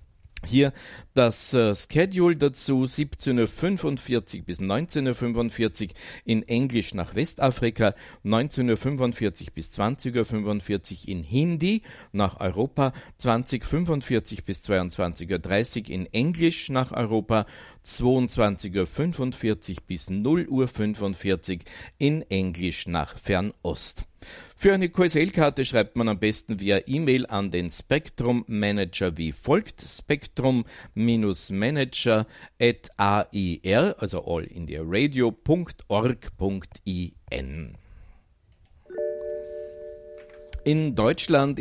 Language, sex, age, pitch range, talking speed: German, male, 50-69, 95-130 Hz, 85 wpm